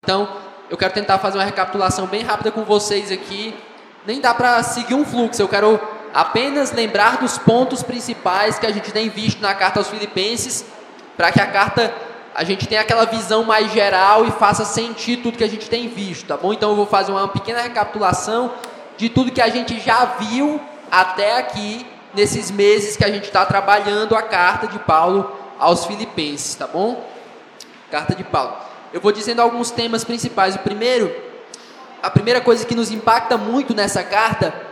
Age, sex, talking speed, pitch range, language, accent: 20-39, male, 185 wpm, 205-240 Hz, Portuguese, Brazilian